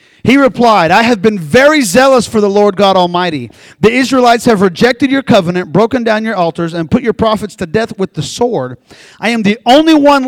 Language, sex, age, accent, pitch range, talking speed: English, male, 40-59, American, 165-245 Hz, 210 wpm